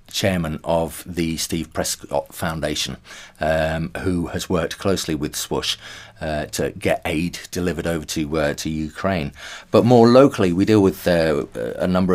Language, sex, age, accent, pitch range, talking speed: English, male, 40-59, British, 80-95 Hz, 160 wpm